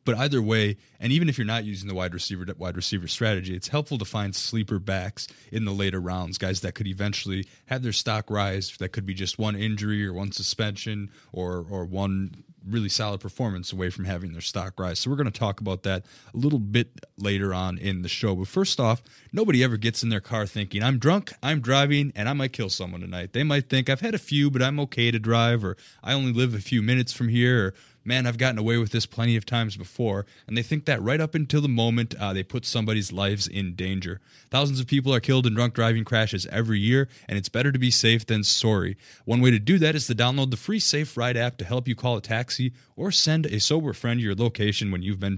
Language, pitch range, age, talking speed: English, 100-130 Hz, 20-39, 245 wpm